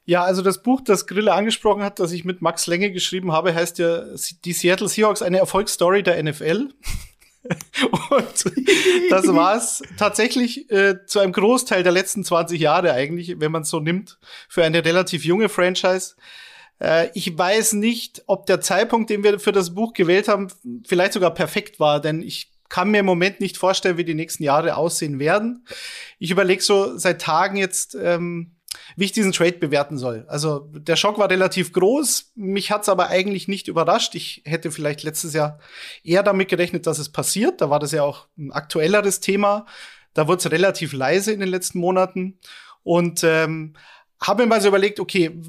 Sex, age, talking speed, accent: male, 30-49, 185 wpm, German